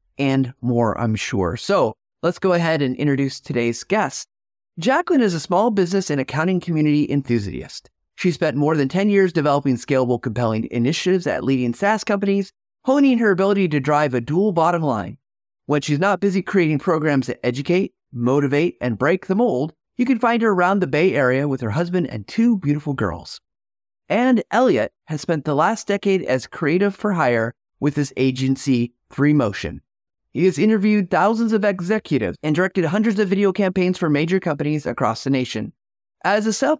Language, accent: English, American